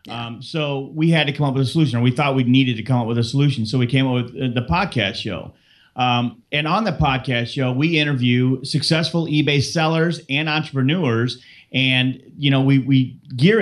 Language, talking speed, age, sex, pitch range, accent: English, 210 wpm, 40-59, male, 130-155 Hz, American